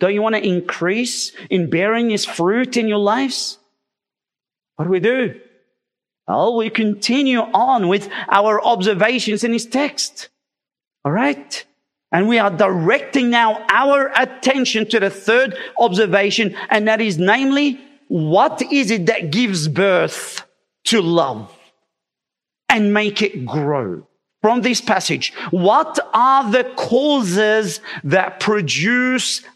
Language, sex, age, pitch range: English, male, 40-59, 170-235 Hz